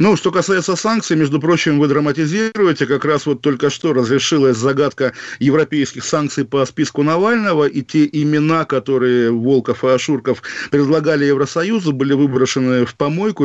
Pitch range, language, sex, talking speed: 140-165 Hz, Russian, male, 145 wpm